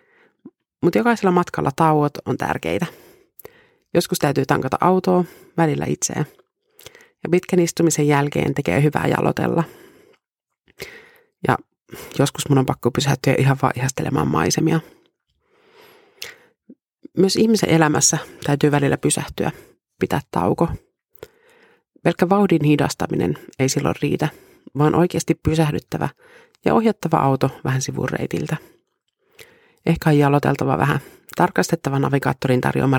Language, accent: Finnish, native